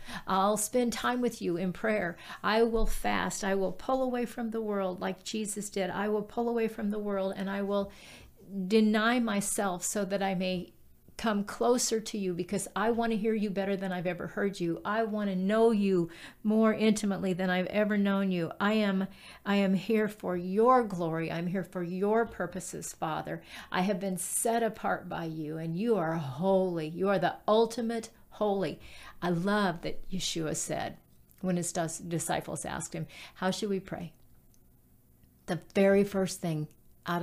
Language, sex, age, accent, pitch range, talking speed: English, female, 50-69, American, 175-210 Hz, 180 wpm